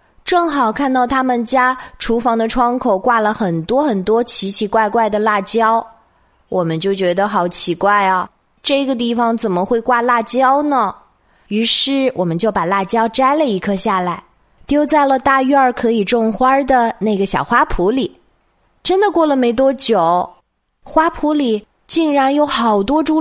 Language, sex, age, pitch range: Chinese, female, 20-39, 210-265 Hz